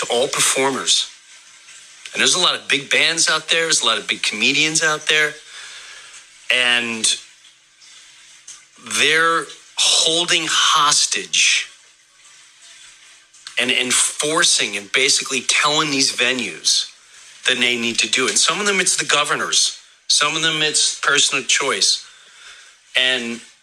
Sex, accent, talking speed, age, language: male, American, 125 wpm, 40-59, English